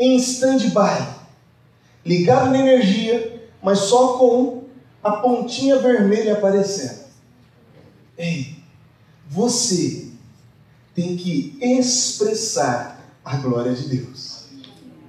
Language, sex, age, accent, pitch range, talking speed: Portuguese, male, 40-59, Brazilian, 165-255 Hz, 85 wpm